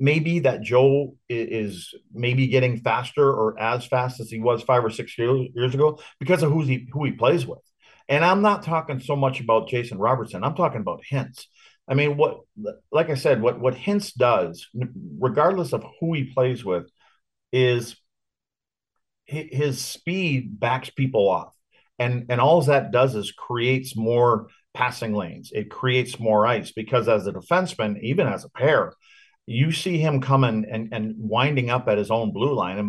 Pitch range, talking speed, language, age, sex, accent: 115-145 Hz, 180 wpm, English, 50-69, male, American